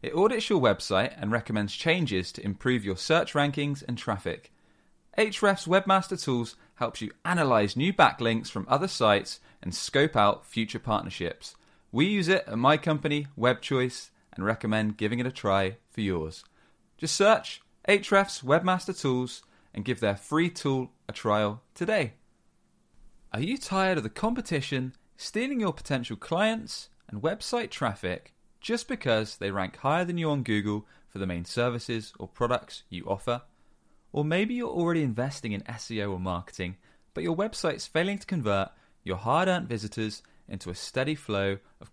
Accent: British